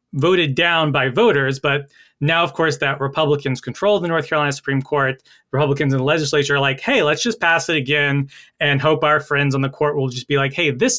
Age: 30-49